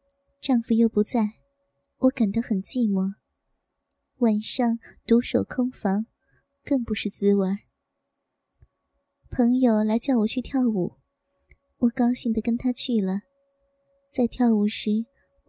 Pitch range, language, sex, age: 220-270 Hz, Chinese, male, 20-39